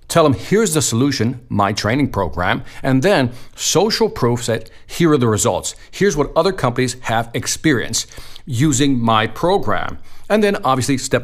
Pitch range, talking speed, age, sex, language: 110-140 Hz, 160 wpm, 50-69, male, English